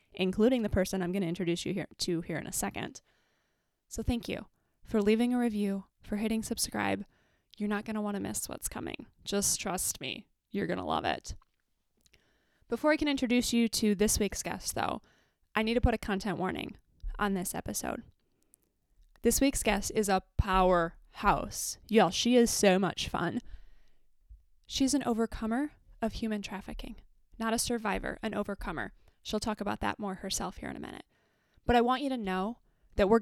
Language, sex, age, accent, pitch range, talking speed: English, female, 20-39, American, 200-230 Hz, 180 wpm